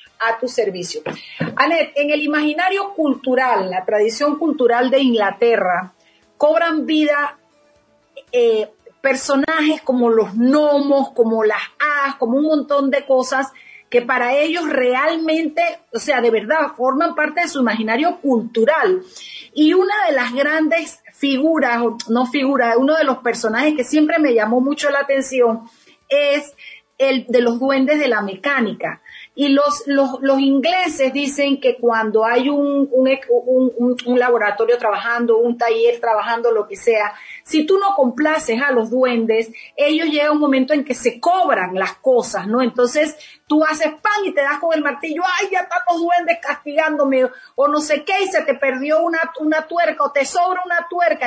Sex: female